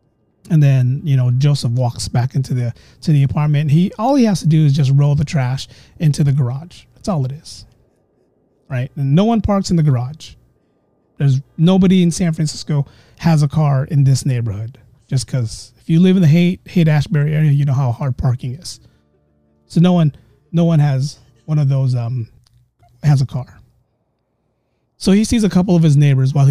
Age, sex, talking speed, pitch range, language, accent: 30-49, male, 200 wpm, 125-165 Hz, English, American